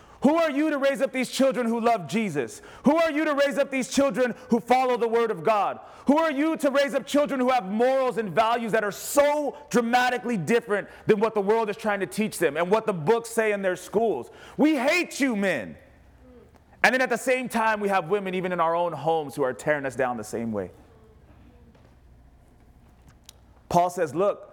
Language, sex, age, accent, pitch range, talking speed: English, male, 30-49, American, 160-235 Hz, 215 wpm